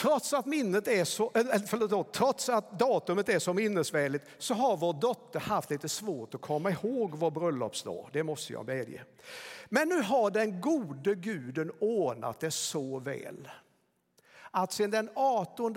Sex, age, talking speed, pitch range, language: male, 60-79, 140 wpm, 145-220 Hz, Swedish